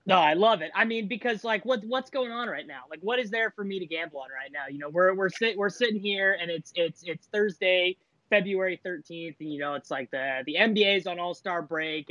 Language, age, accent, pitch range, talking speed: English, 20-39, American, 160-205 Hz, 265 wpm